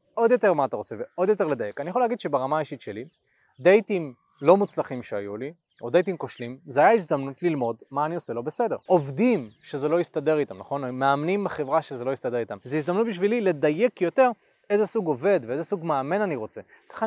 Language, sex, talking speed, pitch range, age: Hebrew, male, 200 wpm, 140-195 Hz, 20-39